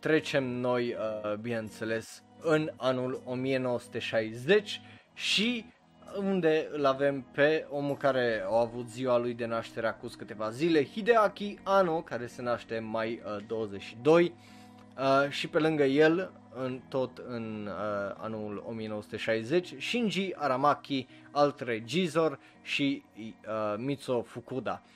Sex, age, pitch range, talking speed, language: male, 20-39, 115-155 Hz, 105 wpm, Romanian